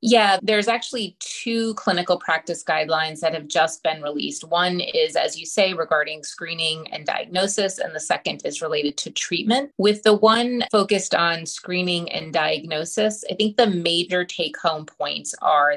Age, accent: 30-49, American